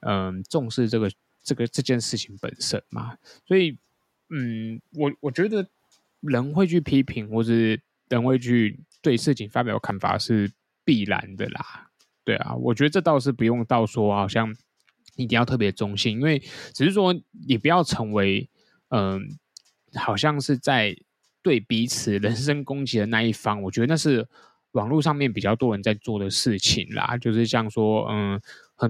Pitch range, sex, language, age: 105-130 Hz, male, Chinese, 20-39